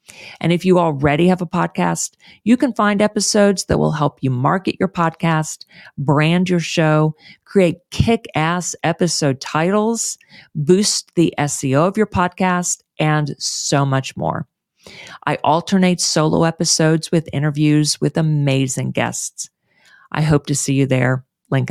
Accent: American